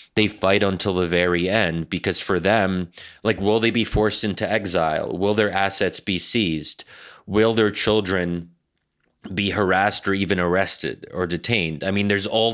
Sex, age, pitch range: male, 30-49, 90-105 Hz